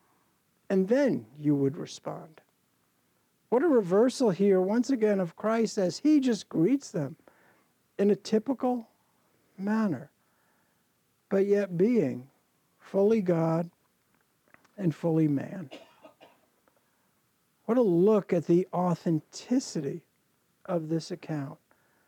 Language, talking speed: English, 105 wpm